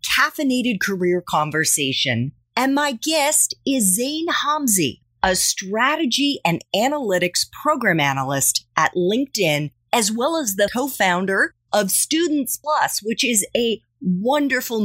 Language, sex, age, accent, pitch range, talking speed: English, female, 30-49, American, 155-240 Hz, 115 wpm